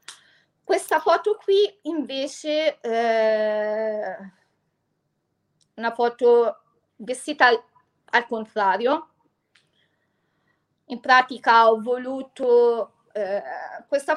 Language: Italian